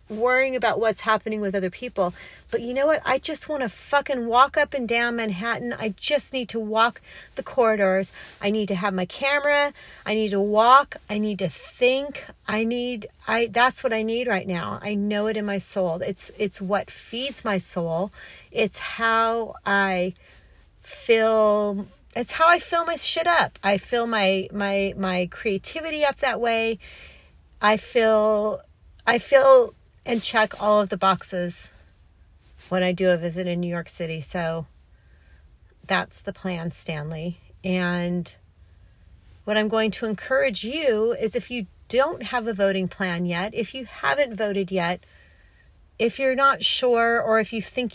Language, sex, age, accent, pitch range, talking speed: English, female, 40-59, American, 185-235 Hz, 170 wpm